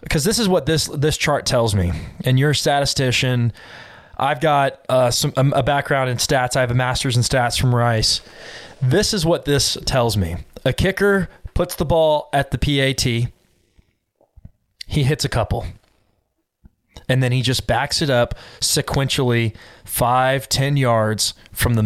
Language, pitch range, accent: English, 110-140 Hz, American